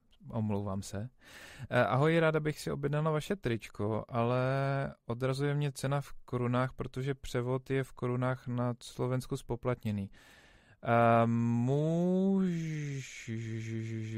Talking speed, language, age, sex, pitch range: 110 wpm, Czech, 20-39, male, 115-140 Hz